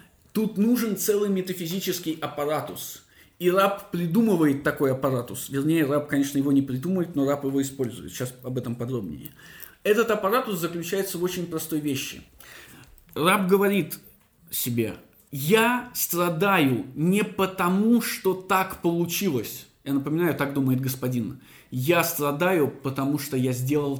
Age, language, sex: 20-39, Russian, male